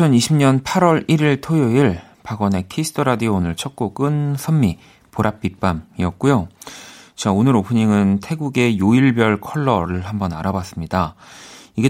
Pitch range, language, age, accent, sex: 95-140 Hz, Korean, 40-59, native, male